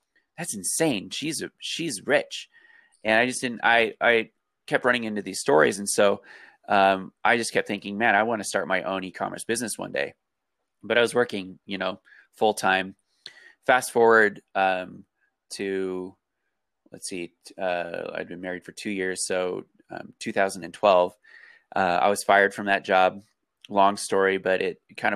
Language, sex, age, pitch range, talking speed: English, male, 20-39, 90-115 Hz, 165 wpm